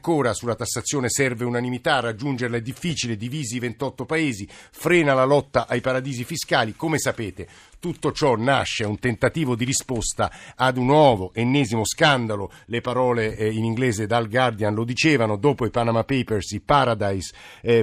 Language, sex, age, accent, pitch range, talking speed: Italian, male, 50-69, native, 110-135 Hz, 160 wpm